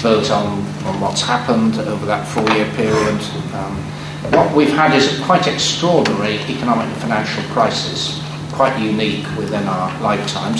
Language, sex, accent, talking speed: English, male, British, 145 wpm